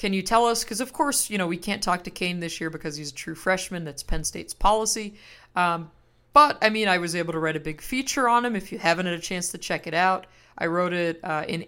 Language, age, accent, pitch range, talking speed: English, 50-69, American, 165-215 Hz, 275 wpm